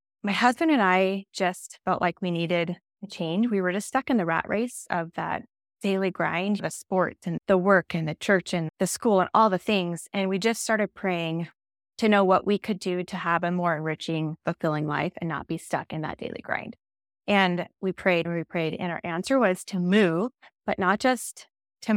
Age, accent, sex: 20-39, American, female